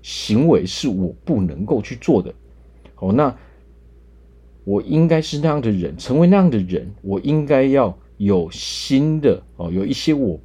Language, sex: Chinese, male